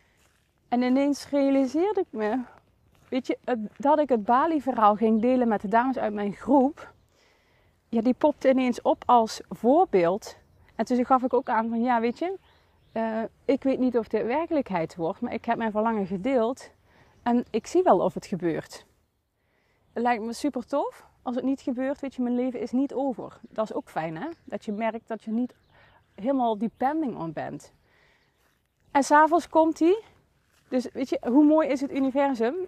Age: 30-49